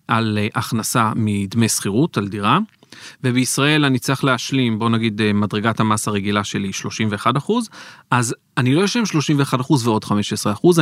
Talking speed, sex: 140 wpm, male